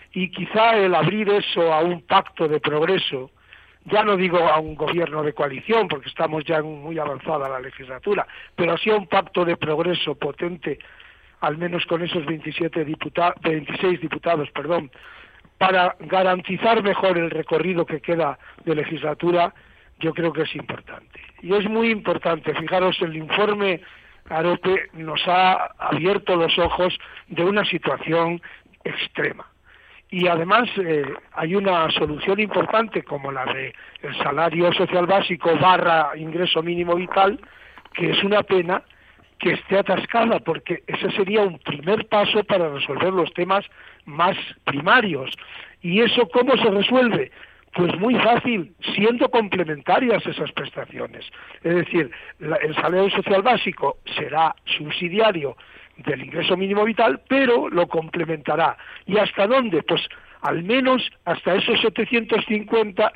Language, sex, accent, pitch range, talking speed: Spanish, male, Spanish, 160-205 Hz, 140 wpm